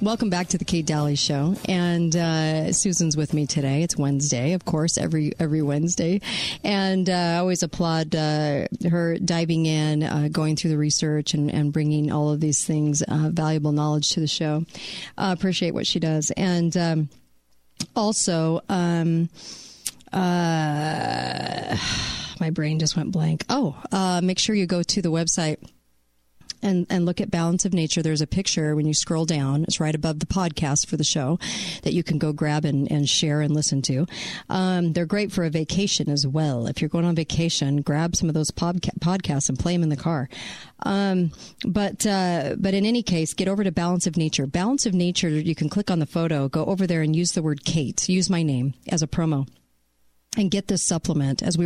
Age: 40-59